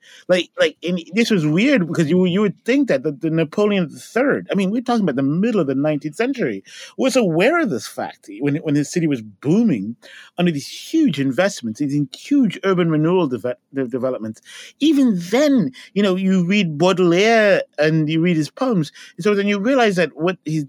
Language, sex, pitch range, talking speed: English, male, 135-195 Hz, 195 wpm